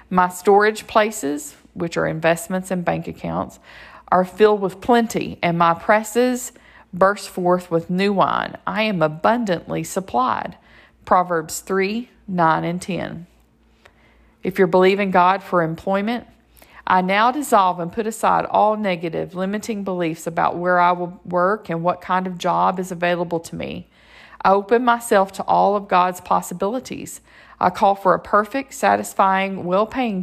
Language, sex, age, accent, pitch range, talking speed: English, female, 40-59, American, 170-205 Hz, 150 wpm